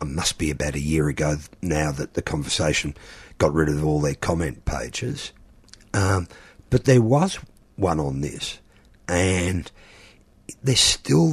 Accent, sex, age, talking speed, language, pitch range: Australian, male, 50-69, 150 wpm, English, 80-110 Hz